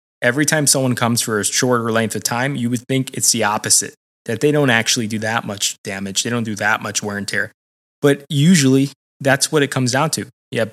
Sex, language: male, English